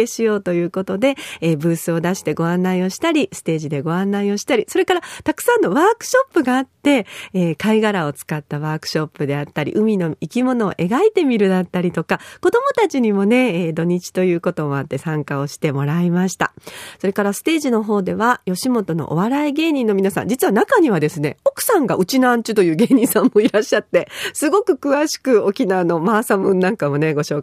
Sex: female